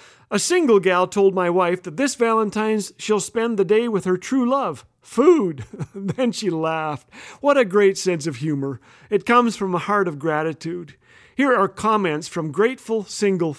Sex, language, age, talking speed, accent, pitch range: male, English, 50-69, 175 wpm, American, 160-225 Hz